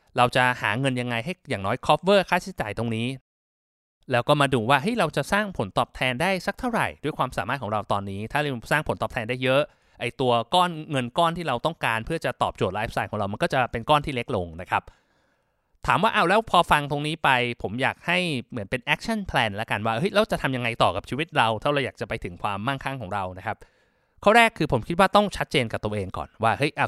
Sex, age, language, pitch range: male, 20-39, Thai, 115-155 Hz